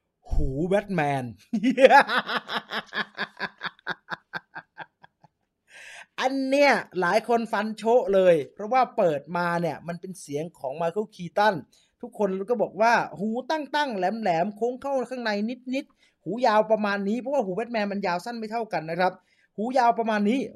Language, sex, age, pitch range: English, male, 20-39, 175-230 Hz